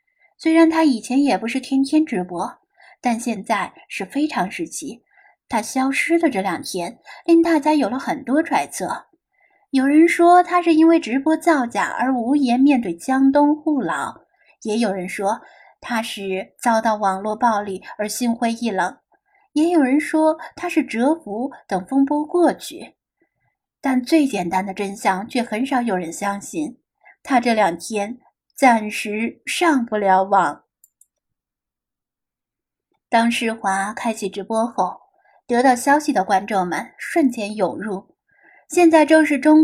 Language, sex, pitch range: Chinese, female, 215-315 Hz